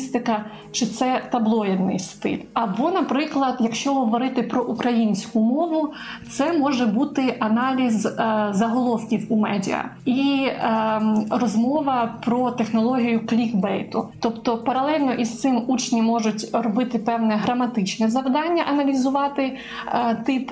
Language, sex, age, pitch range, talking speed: Ukrainian, female, 20-39, 220-260 Hz, 100 wpm